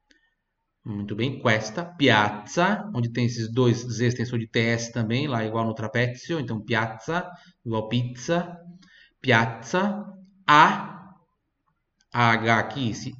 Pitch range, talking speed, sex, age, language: 115-165 Hz, 115 wpm, male, 30-49, Italian